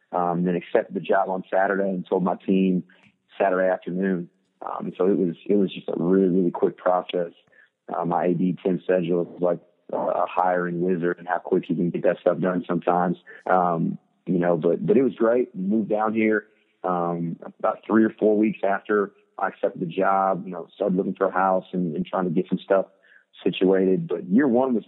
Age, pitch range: 30-49, 90-100 Hz